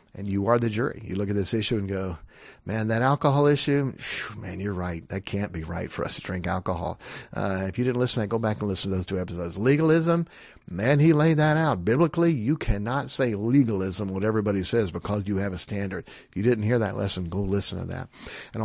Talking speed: 235 wpm